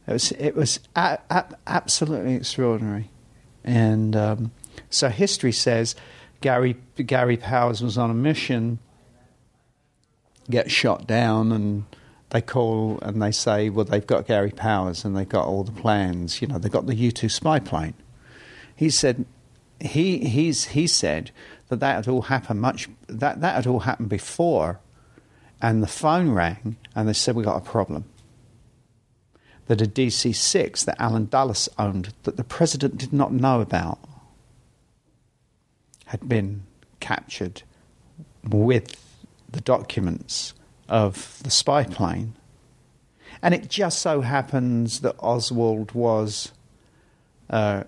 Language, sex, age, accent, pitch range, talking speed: English, male, 50-69, British, 110-130 Hz, 140 wpm